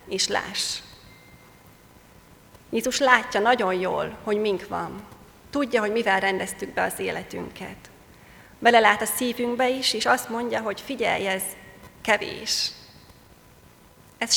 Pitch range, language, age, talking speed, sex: 210-275 Hz, Hungarian, 30-49, 120 wpm, female